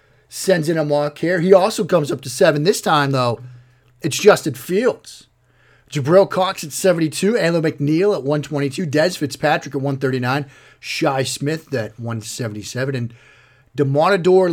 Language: English